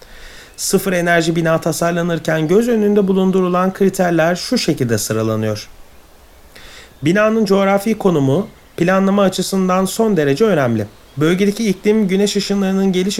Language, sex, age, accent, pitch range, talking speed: Turkish, male, 40-59, native, 150-205 Hz, 110 wpm